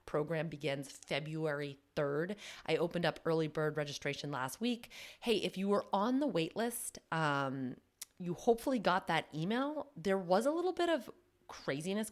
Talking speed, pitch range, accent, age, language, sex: 165 wpm, 140-180 Hz, American, 30-49, English, female